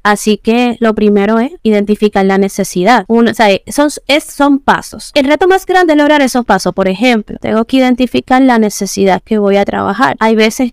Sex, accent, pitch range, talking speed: female, American, 195-225 Hz, 180 wpm